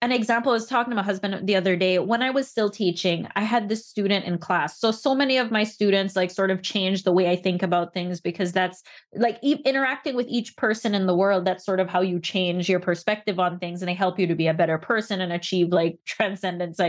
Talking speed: 250 wpm